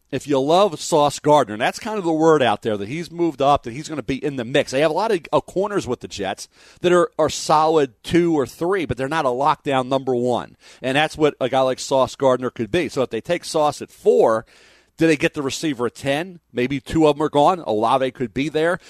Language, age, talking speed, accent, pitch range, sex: English, 40-59, 255 wpm, American, 125-155 Hz, male